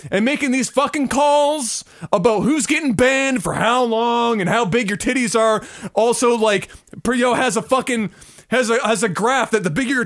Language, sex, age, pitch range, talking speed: English, male, 20-39, 235-325 Hz, 190 wpm